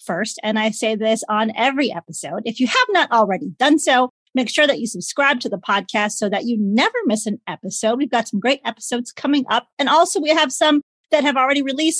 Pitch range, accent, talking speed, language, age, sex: 220-290 Hz, American, 230 wpm, English, 40-59, female